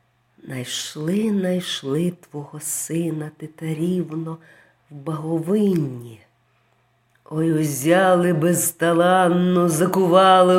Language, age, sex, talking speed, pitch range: Ukrainian, 40-59, female, 60 wpm, 125-205 Hz